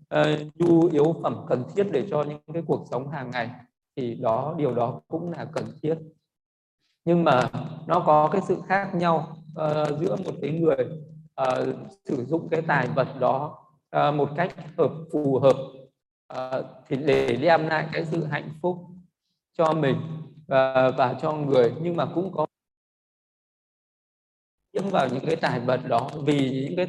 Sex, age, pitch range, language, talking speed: male, 20-39, 135-165 Hz, Vietnamese, 170 wpm